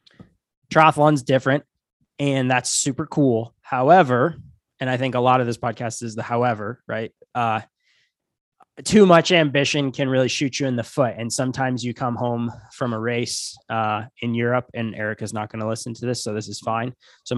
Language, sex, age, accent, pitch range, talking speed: English, male, 20-39, American, 105-130 Hz, 190 wpm